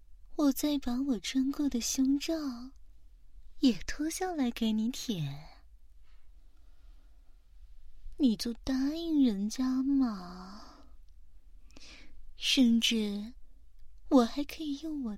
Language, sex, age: Chinese, female, 20-39